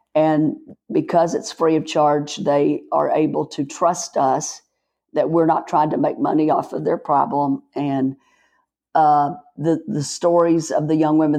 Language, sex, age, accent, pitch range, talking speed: English, female, 50-69, American, 150-165 Hz, 170 wpm